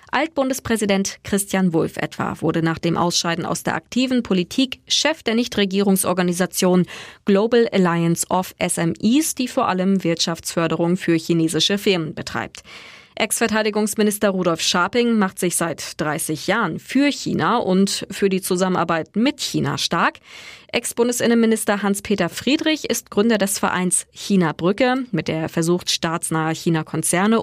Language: German